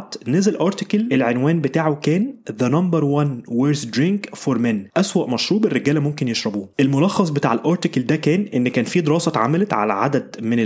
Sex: male